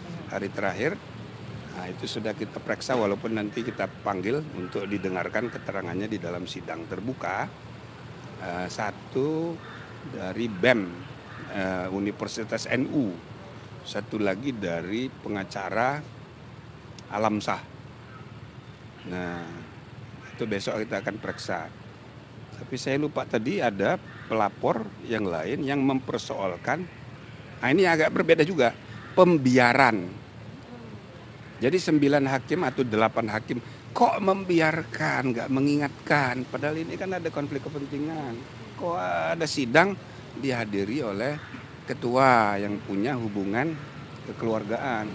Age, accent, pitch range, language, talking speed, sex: 60-79, native, 110-150 Hz, Indonesian, 105 wpm, male